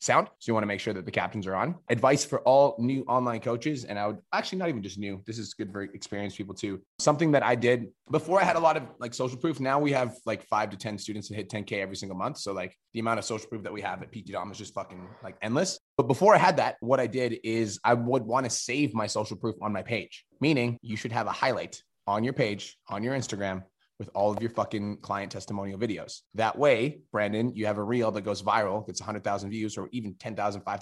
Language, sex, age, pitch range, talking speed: English, male, 20-39, 100-125 Hz, 265 wpm